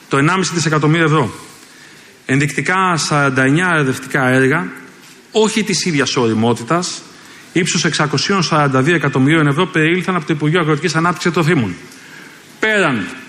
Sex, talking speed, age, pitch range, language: male, 115 wpm, 30-49, 135-180 Hz, Greek